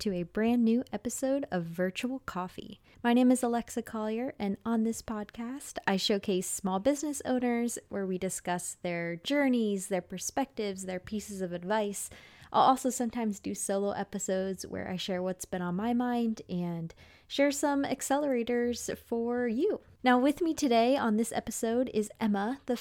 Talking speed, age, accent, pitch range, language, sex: 165 wpm, 20-39, American, 190-245 Hz, English, female